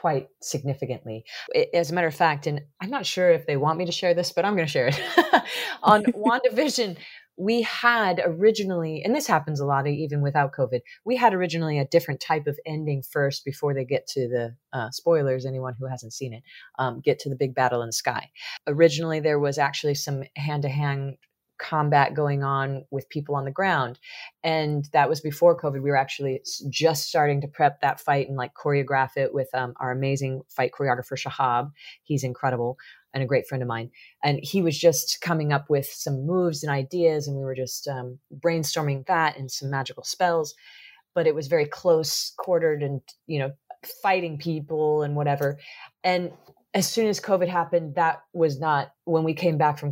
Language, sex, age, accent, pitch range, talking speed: English, female, 30-49, American, 135-170 Hz, 195 wpm